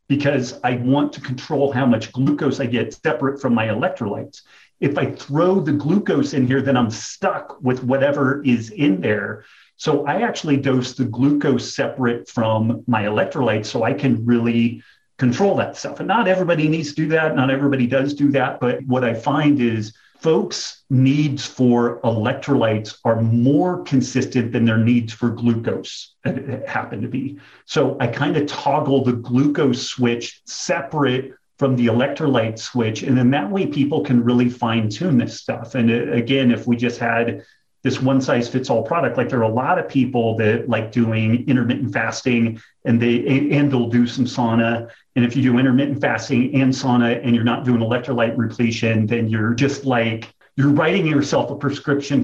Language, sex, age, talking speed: English, male, 40-59, 180 wpm